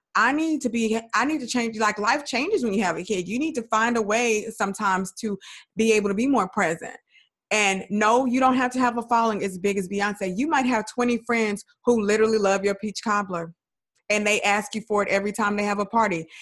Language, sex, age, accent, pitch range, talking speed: English, female, 20-39, American, 190-220 Hz, 240 wpm